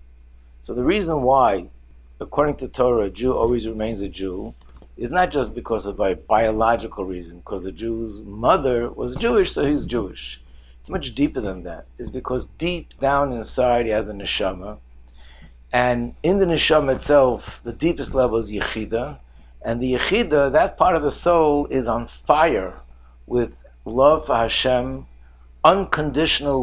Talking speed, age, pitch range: 160 wpm, 50-69, 95-145 Hz